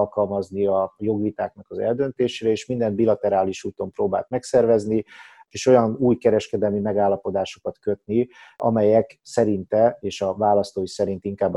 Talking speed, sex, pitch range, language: 120 wpm, male, 100-110 Hz, Hungarian